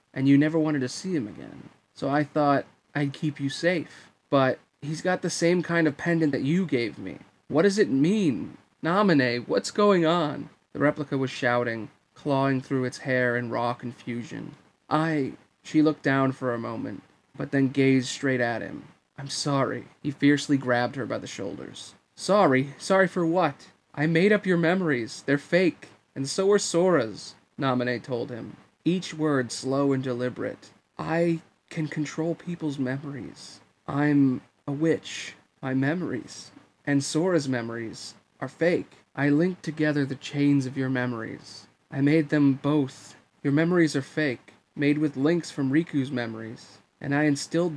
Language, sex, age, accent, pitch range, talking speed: English, male, 30-49, American, 130-155 Hz, 165 wpm